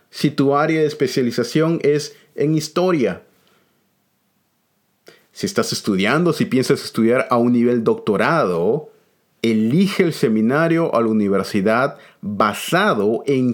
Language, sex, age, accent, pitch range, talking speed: Spanish, male, 40-59, Venezuelan, 115-175 Hz, 115 wpm